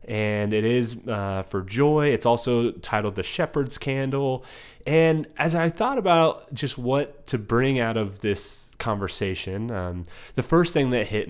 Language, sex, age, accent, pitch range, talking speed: English, male, 30-49, American, 110-135 Hz, 165 wpm